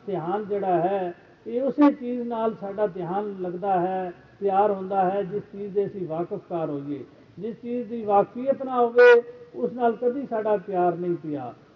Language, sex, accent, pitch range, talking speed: Hindi, male, native, 185-230 Hz, 135 wpm